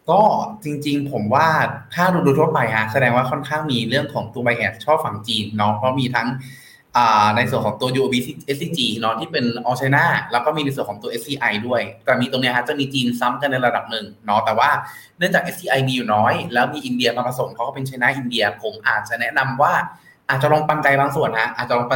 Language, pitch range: Thai, 120-155 Hz